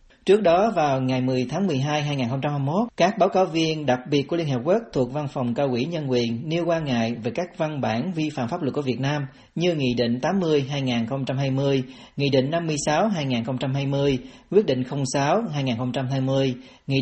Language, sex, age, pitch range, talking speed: Vietnamese, male, 40-59, 125-165 Hz, 180 wpm